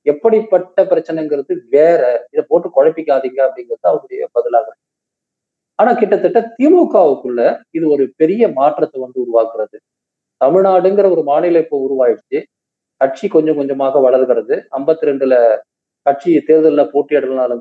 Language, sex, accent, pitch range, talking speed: Tamil, male, native, 135-210 Hz, 110 wpm